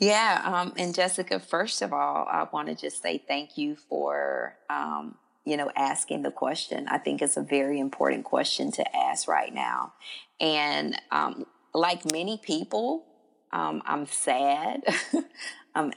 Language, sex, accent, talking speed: English, female, American, 155 wpm